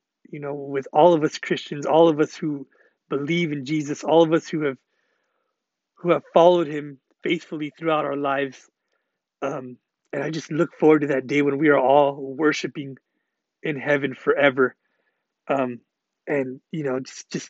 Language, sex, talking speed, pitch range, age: English, male, 170 wpm, 140-165 Hz, 30-49